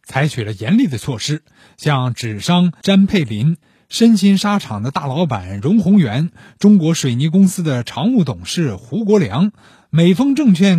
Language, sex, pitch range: Chinese, male, 135-205 Hz